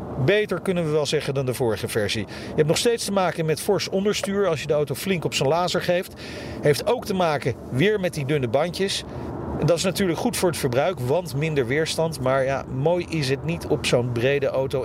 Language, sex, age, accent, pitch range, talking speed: Dutch, male, 40-59, Dutch, 145-190 Hz, 225 wpm